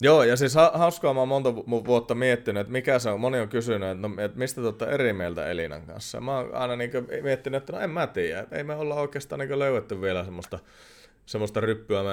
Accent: native